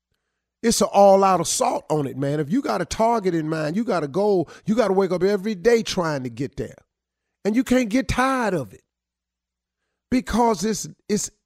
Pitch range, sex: 170-245 Hz, male